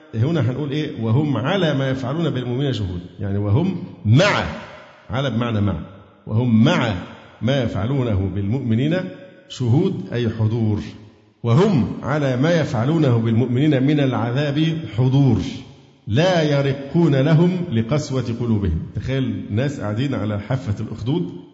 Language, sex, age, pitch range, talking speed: Arabic, male, 50-69, 110-145 Hz, 115 wpm